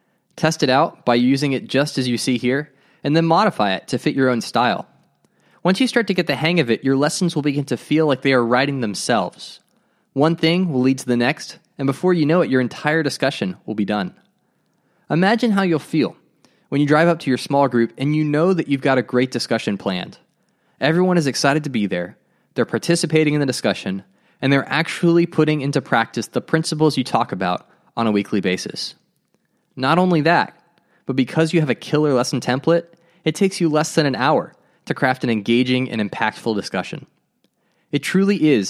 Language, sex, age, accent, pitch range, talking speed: English, male, 20-39, American, 125-160 Hz, 210 wpm